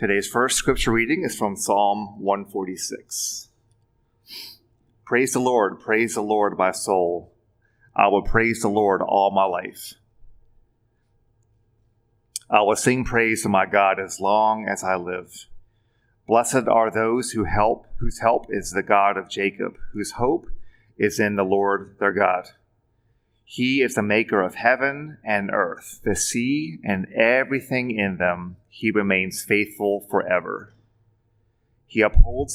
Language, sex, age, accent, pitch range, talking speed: English, male, 40-59, American, 100-115 Hz, 140 wpm